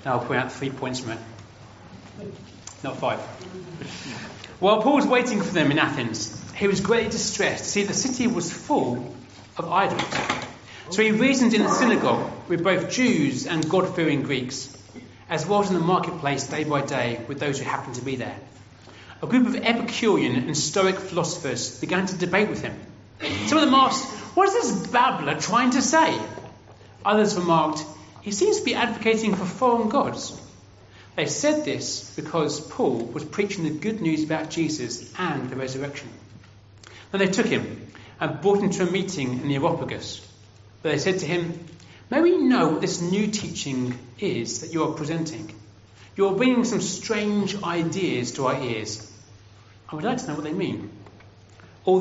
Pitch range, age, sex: 125-200 Hz, 40-59, male